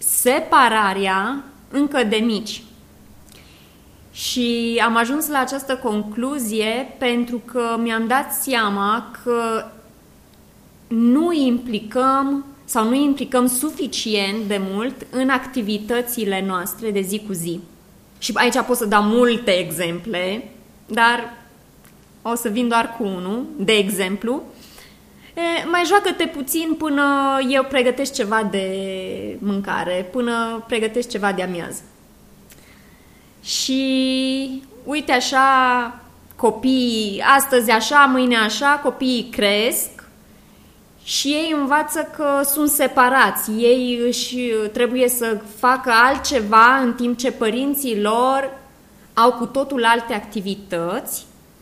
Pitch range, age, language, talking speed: 220-265 Hz, 20-39, Romanian, 110 wpm